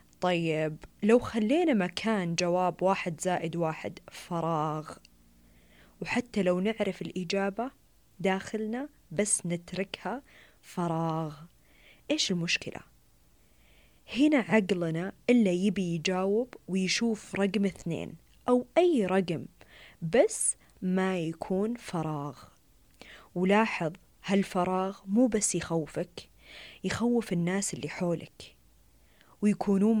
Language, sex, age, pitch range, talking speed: Arabic, female, 20-39, 170-210 Hz, 90 wpm